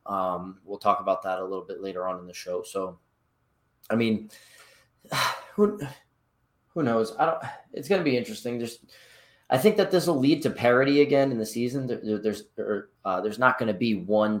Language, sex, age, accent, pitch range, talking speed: English, male, 20-39, American, 95-120 Hz, 205 wpm